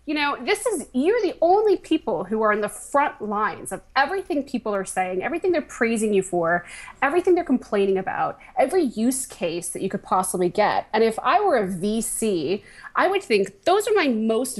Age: 20-39